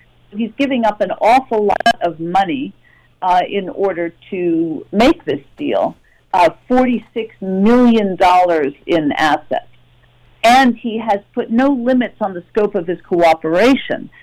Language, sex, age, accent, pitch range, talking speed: English, female, 50-69, American, 175-230 Hz, 135 wpm